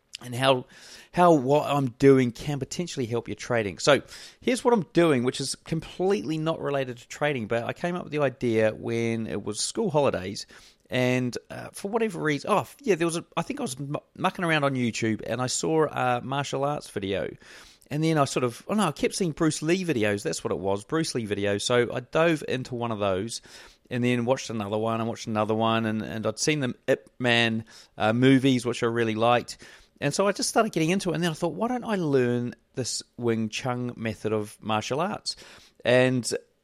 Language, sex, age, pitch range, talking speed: English, male, 30-49, 115-150 Hz, 220 wpm